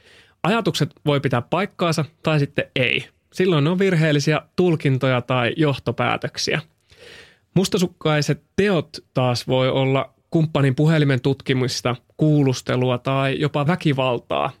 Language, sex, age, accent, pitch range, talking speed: Finnish, male, 30-49, native, 130-165 Hz, 105 wpm